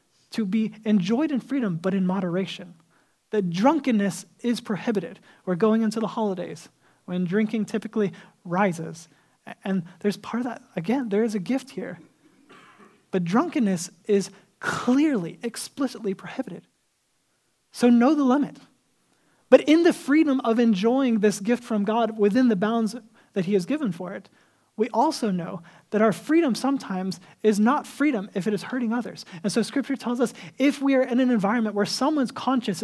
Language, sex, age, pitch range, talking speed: English, male, 20-39, 195-245 Hz, 165 wpm